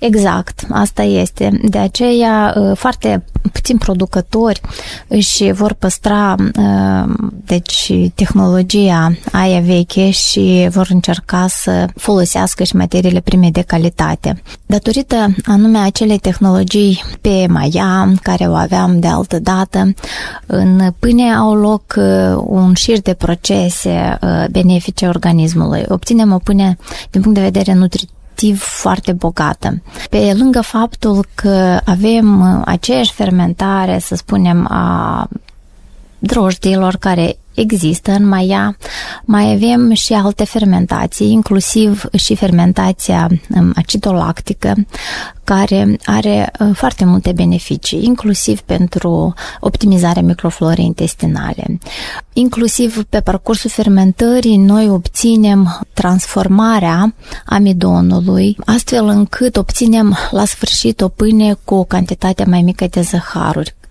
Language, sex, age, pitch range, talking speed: Romanian, female, 20-39, 180-210 Hz, 105 wpm